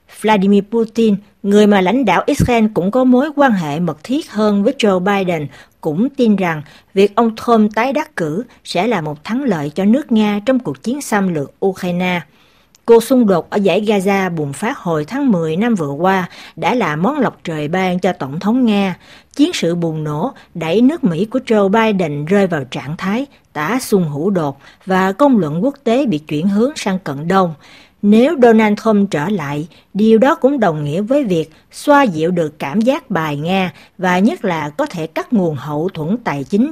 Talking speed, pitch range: 205 wpm, 165-230 Hz